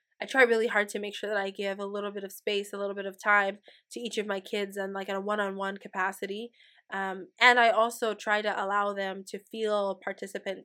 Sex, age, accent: female, 20-39, American